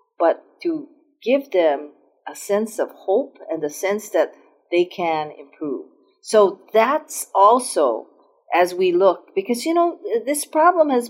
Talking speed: 145 wpm